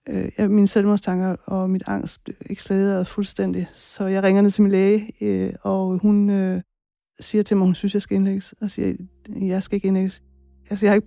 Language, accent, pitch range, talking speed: Danish, native, 185-215 Hz, 210 wpm